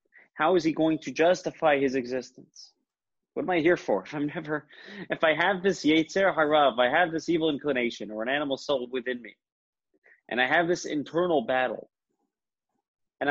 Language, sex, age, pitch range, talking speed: English, male, 30-49, 125-165 Hz, 180 wpm